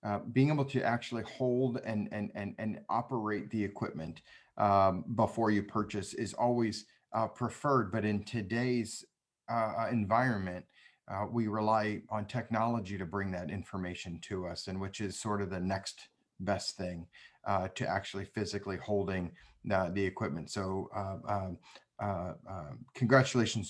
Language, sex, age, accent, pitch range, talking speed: English, male, 40-59, American, 100-125 Hz, 155 wpm